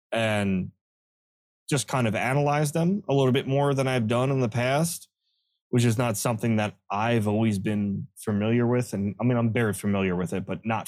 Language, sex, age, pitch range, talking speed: English, male, 20-39, 100-125 Hz, 200 wpm